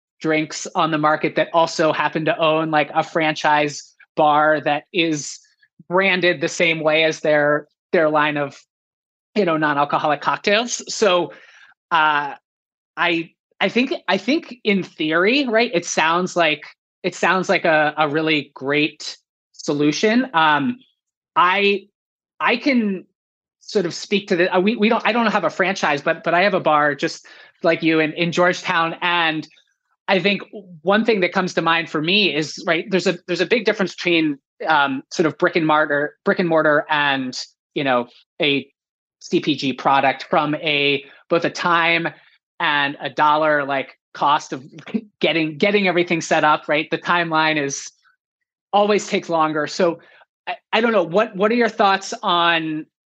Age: 20-39